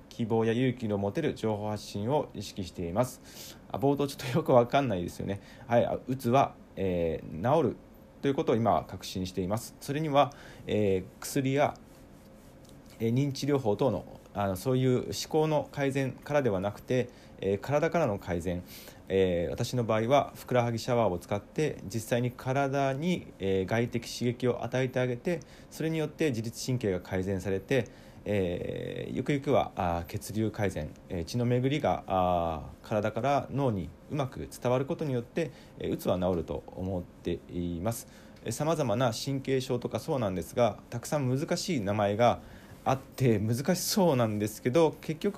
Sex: male